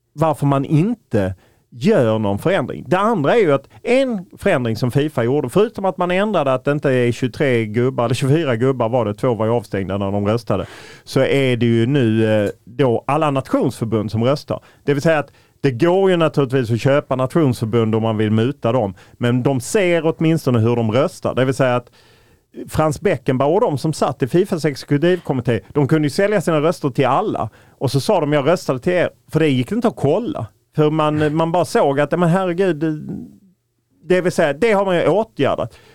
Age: 40-59